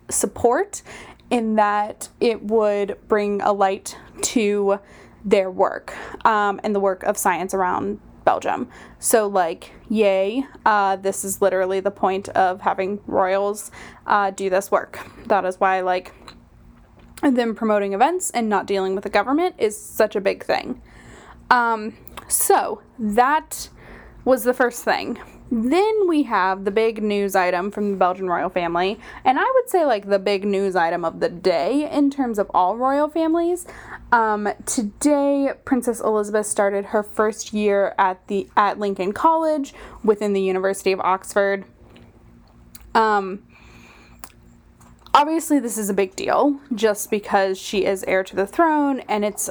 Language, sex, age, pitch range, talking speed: English, female, 10-29, 195-240 Hz, 150 wpm